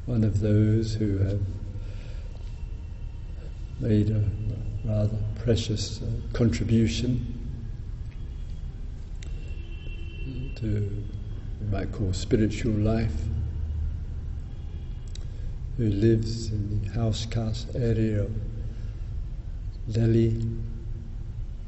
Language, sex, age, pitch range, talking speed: English, male, 60-79, 100-110 Hz, 75 wpm